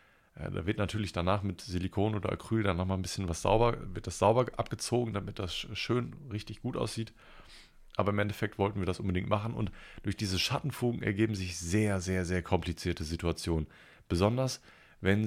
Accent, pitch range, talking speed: German, 90-105 Hz, 175 wpm